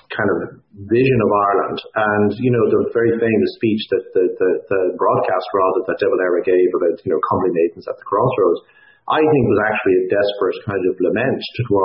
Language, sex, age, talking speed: English, male, 50-69, 190 wpm